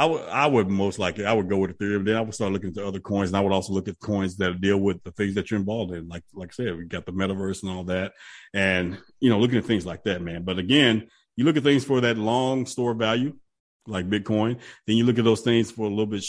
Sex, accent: male, American